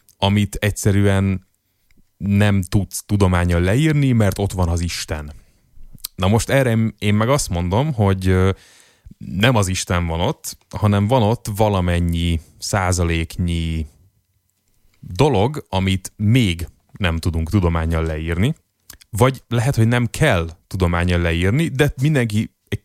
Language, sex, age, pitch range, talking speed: Hungarian, male, 30-49, 85-105 Hz, 120 wpm